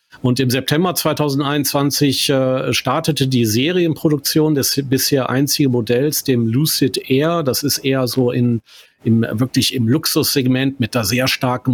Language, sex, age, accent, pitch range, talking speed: German, male, 40-59, German, 125-145 Hz, 145 wpm